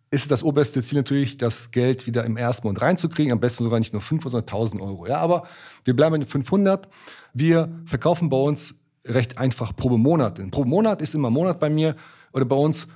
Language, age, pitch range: German, 40-59, 120-160 Hz